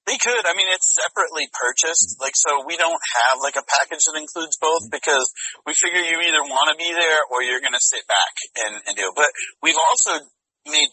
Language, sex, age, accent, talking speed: English, male, 30-49, American, 225 wpm